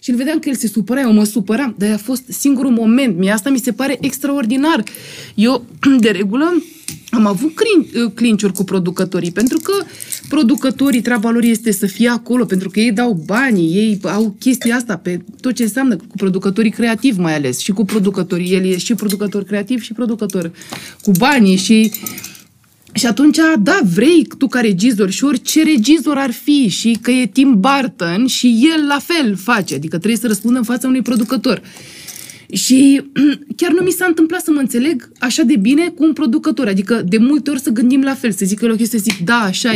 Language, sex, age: Romanian, female, 20-39